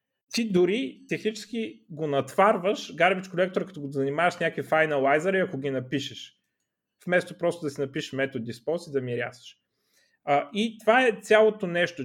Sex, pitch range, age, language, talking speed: male, 135-210 Hz, 30-49, Bulgarian, 160 wpm